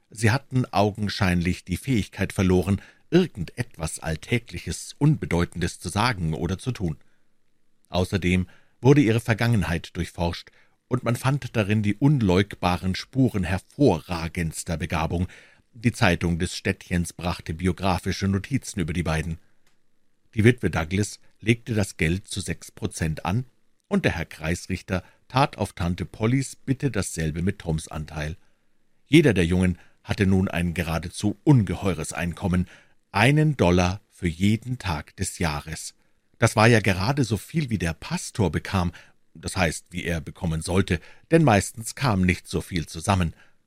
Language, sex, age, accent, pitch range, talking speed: German, male, 60-79, German, 85-110 Hz, 135 wpm